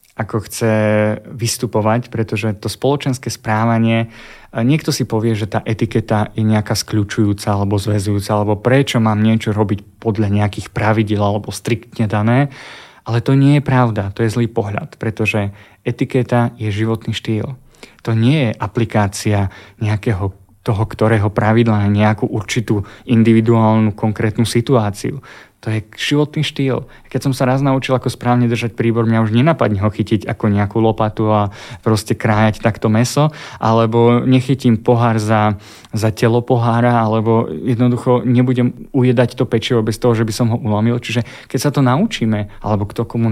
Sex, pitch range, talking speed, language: male, 110-125 Hz, 155 wpm, Slovak